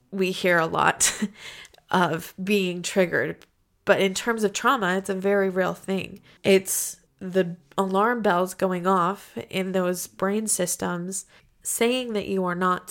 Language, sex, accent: English, female, American